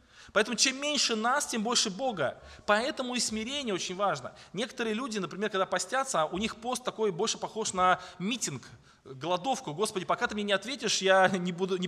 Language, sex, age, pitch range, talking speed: Russian, male, 20-39, 180-230 Hz, 180 wpm